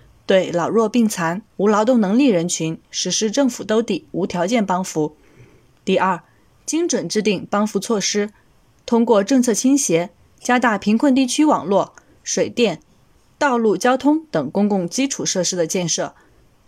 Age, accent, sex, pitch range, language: 20-39, native, female, 185-255 Hz, Chinese